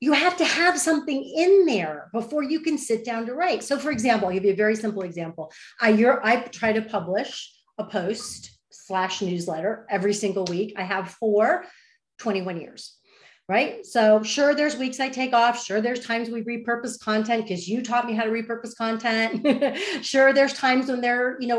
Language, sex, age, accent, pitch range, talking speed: English, female, 40-59, American, 190-275 Hz, 195 wpm